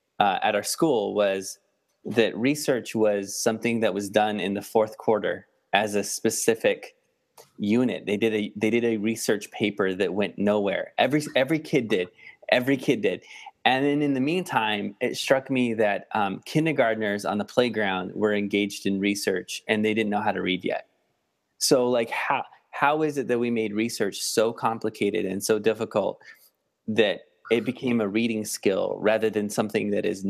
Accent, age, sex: American, 20-39, male